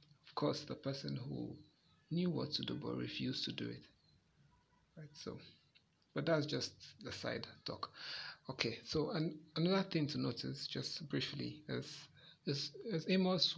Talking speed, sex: 150 wpm, male